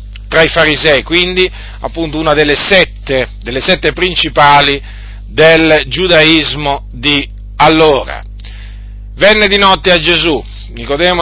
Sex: male